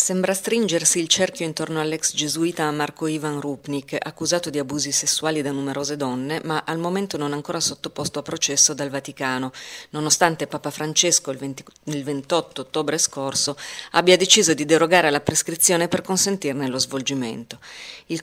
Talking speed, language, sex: 150 wpm, Italian, female